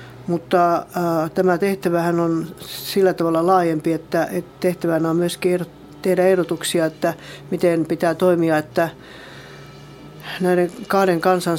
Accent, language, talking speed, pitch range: native, Finnish, 125 wpm, 160-180 Hz